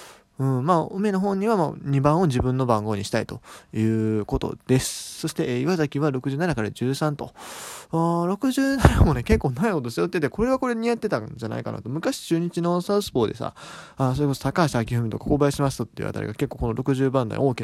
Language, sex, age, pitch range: Japanese, male, 20-39, 115-165 Hz